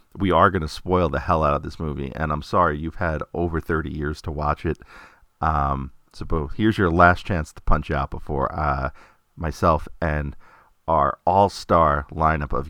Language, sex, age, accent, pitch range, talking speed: English, male, 40-59, American, 75-90 Hz, 195 wpm